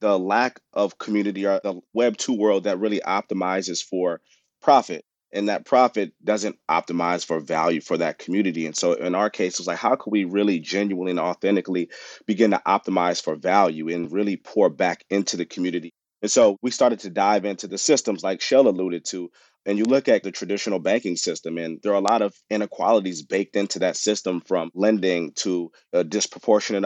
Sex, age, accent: male, 30-49, American